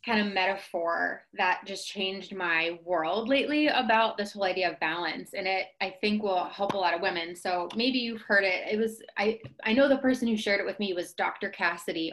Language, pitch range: English, 180-215 Hz